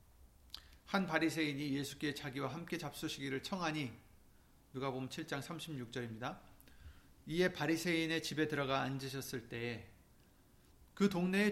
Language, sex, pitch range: Korean, male, 120-165 Hz